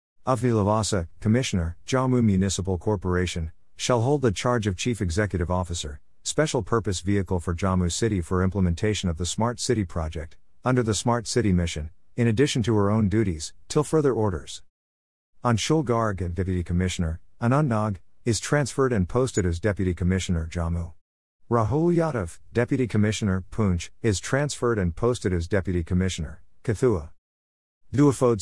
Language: English